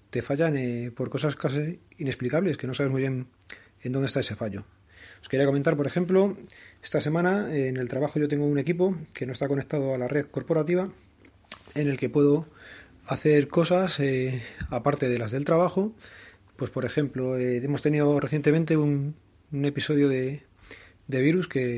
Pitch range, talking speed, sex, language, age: 125-155 Hz, 180 wpm, male, Spanish, 30-49